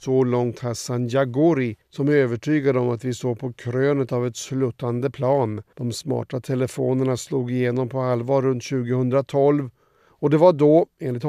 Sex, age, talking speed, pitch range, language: male, 50-69, 165 wpm, 120-140 Hz, Swedish